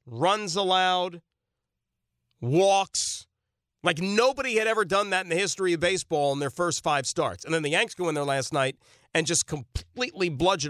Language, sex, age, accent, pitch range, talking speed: English, male, 40-59, American, 145-190 Hz, 180 wpm